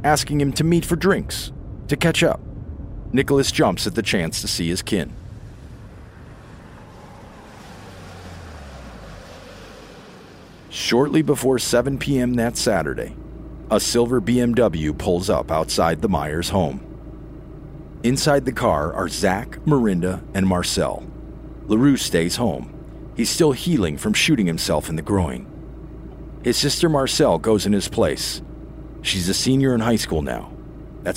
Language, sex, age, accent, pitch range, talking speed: English, male, 50-69, American, 90-140 Hz, 130 wpm